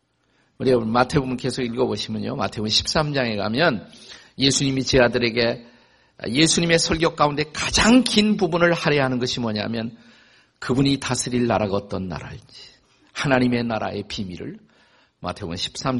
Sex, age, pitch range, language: male, 50-69, 105-150 Hz, Korean